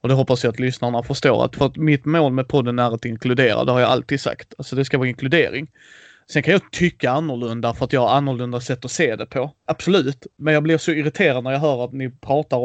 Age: 20-39